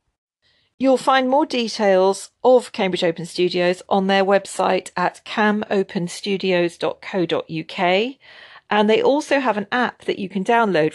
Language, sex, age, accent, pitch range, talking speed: English, female, 40-59, British, 165-215 Hz, 125 wpm